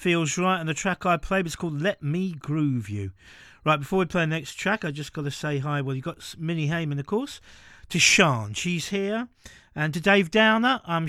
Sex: male